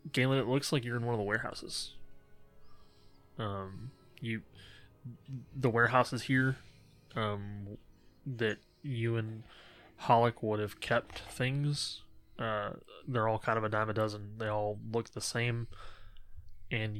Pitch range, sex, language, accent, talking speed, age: 100-115 Hz, male, English, American, 140 wpm, 20-39